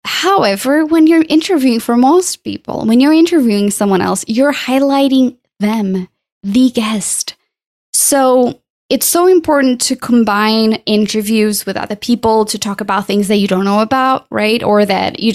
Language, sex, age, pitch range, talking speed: English, female, 10-29, 205-270 Hz, 155 wpm